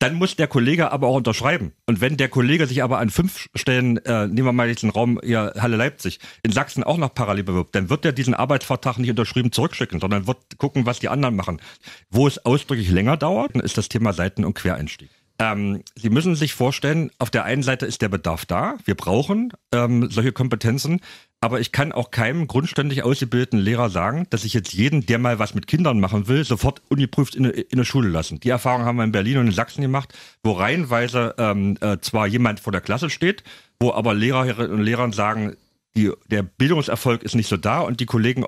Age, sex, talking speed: 40-59, male, 215 wpm